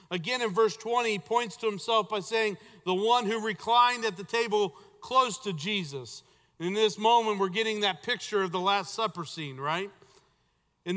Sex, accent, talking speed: male, American, 185 wpm